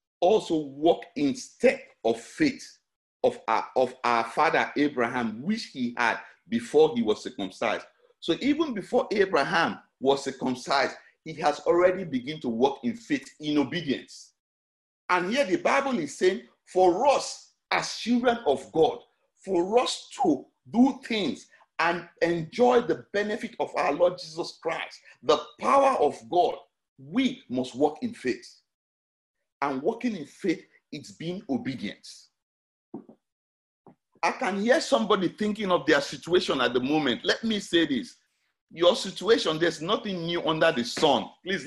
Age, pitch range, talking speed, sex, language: 50-69, 155-245 Hz, 145 wpm, male, English